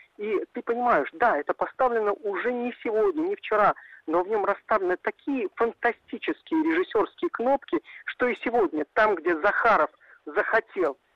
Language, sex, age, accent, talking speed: Russian, male, 50-69, native, 140 wpm